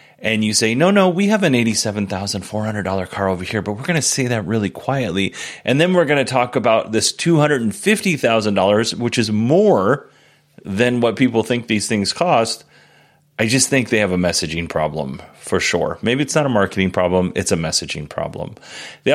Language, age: English, 30-49